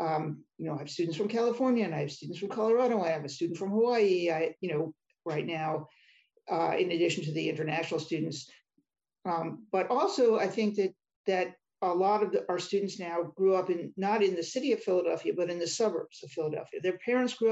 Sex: male